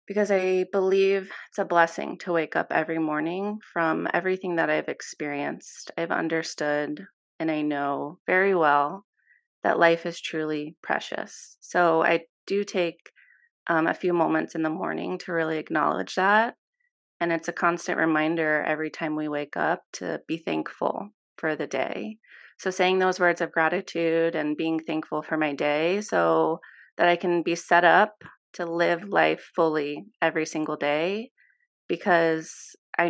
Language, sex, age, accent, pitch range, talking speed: English, female, 30-49, American, 155-190 Hz, 160 wpm